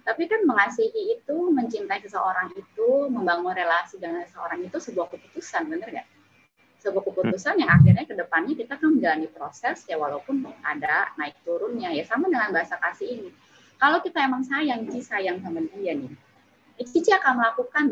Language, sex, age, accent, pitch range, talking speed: Indonesian, female, 20-39, native, 200-325 Hz, 165 wpm